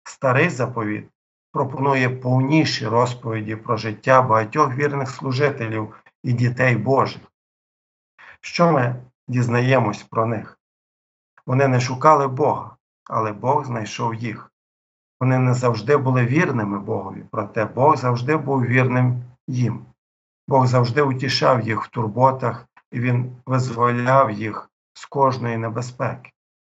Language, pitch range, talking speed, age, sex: Ukrainian, 110-130 Hz, 115 wpm, 50-69, male